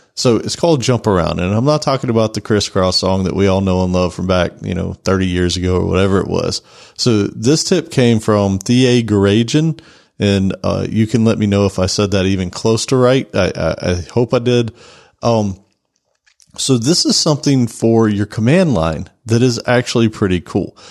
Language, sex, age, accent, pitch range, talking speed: English, male, 40-59, American, 100-130 Hz, 205 wpm